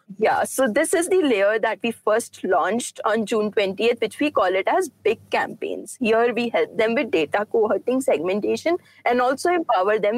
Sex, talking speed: female, 190 wpm